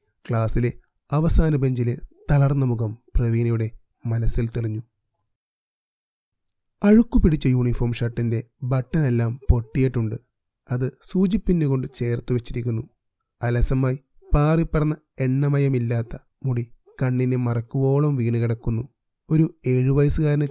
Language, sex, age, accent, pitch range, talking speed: Malayalam, male, 30-49, native, 120-150 Hz, 80 wpm